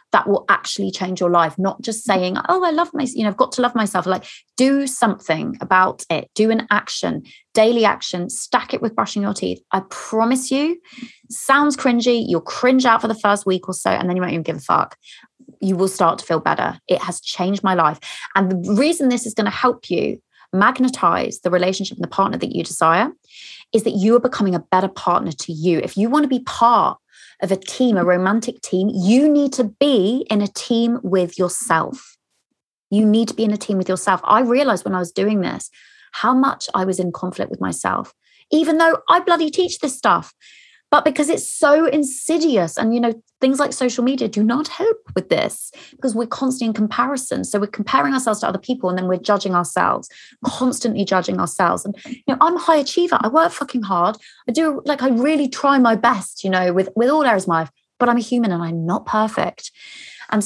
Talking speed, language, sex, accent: 220 wpm, English, female, British